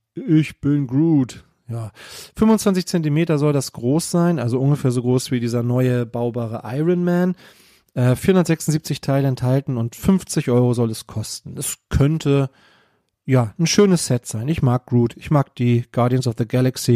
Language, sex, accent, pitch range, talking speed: German, male, German, 120-155 Hz, 165 wpm